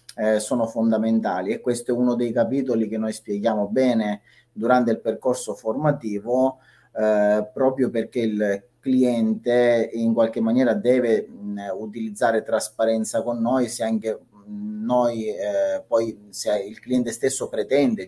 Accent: native